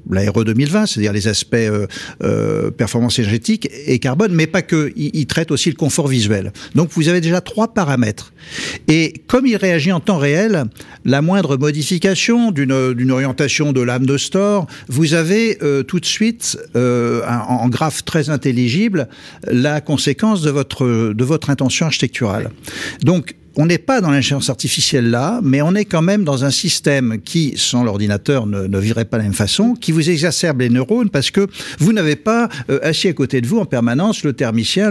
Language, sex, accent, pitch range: French, male, French, 125-175 Hz